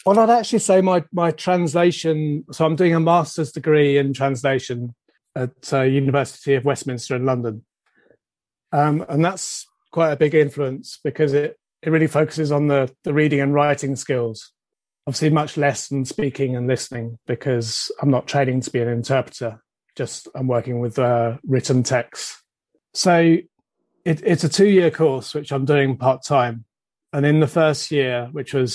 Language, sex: Italian, male